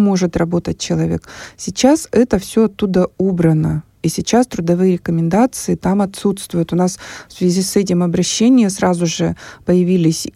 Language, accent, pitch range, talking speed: Russian, native, 175-210 Hz, 140 wpm